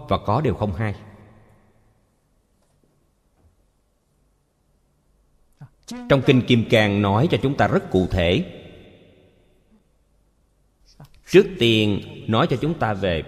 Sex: male